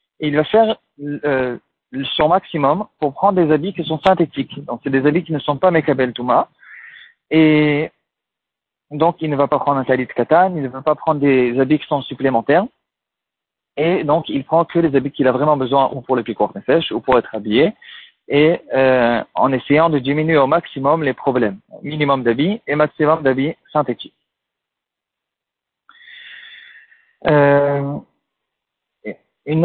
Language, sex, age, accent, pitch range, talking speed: French, male, 40-59, French, 135-165 Hz, 165 wpm